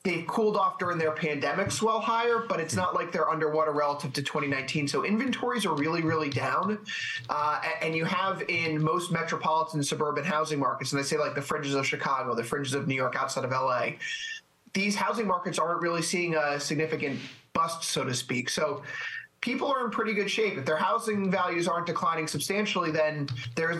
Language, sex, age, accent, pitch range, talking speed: English, male, 20-39, American, 145-185 Hz, 195 wpm